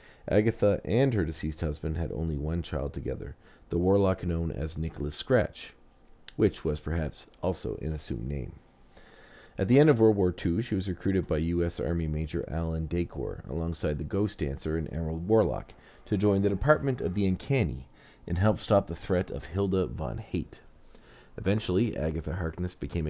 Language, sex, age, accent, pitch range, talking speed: English, male, 40-59, American, 80-100 Hz, 170 wpm